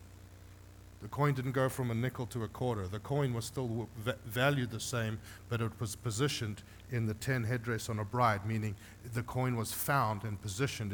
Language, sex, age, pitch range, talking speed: English, male, 50-69, 95-125 Hz, 190 wpm